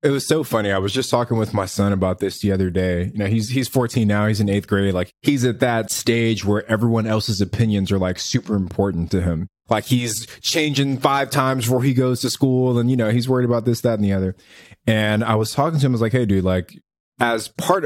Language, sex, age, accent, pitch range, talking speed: English, male, 20-39, American, 105-130 Hz, 255 wpm